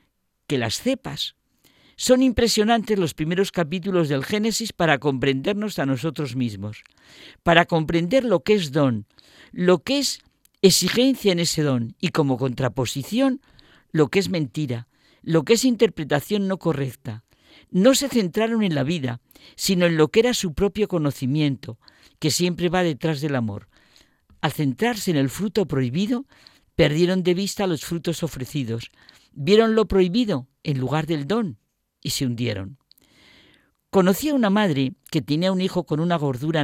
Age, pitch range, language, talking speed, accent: 50-69, 145-215 Hz, Spanish, 150 wpm, Spanish